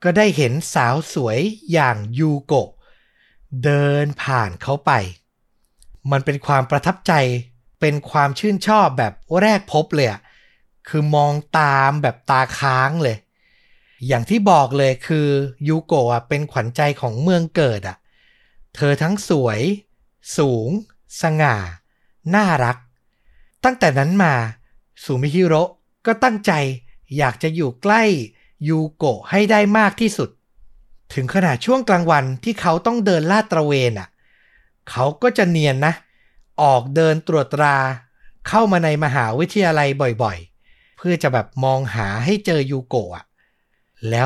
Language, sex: Thai, male